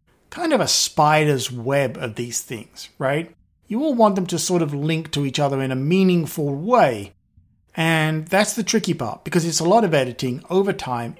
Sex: male